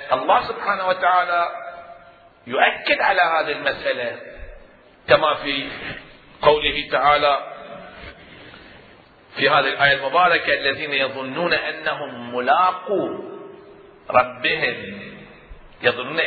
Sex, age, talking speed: male, 50-69, 75 wpm